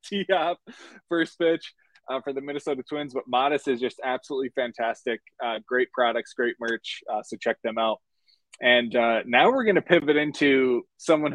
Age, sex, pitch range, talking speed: 20-39, male, 130-165 Hz, 180 wpm